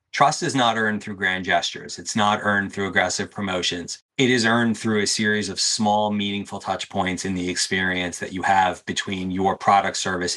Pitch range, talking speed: 100-115 Hz, 195 wpm